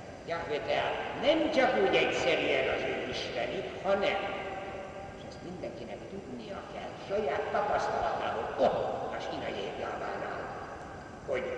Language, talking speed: Hungarian, 105 wpm